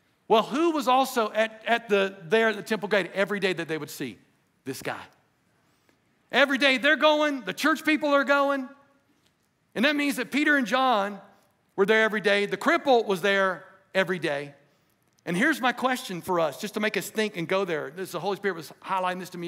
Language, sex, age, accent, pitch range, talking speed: English, male, 50-69, American, 195-275 Hz, 200 wpm